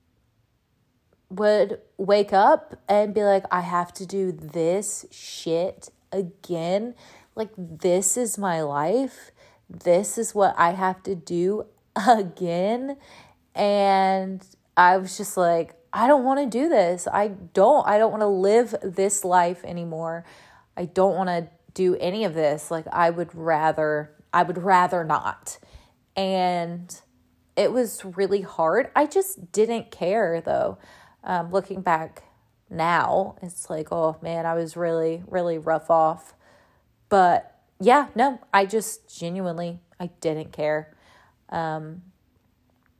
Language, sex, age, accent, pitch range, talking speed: English, female, 30-49, American, 165-205 Hz, 135 wpm